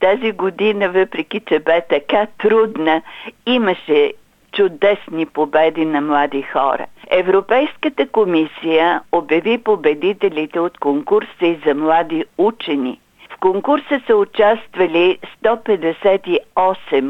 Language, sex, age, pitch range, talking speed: Bulgarian, female, 50-69, 165-220 Hz, 100 wpm